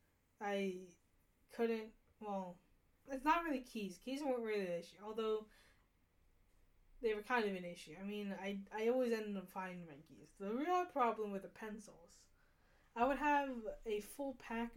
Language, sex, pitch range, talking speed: English, female, 185-245 Hz, 165 wpm